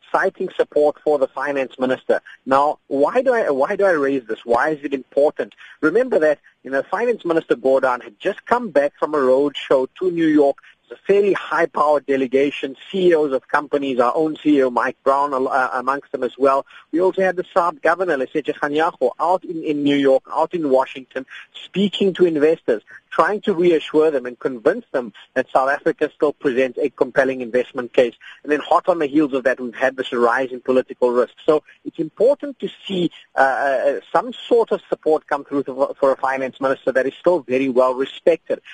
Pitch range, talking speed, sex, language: 135-185 Hz, 200 wpm, male, English